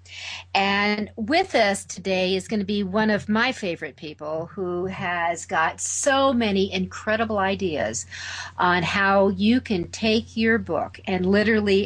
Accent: American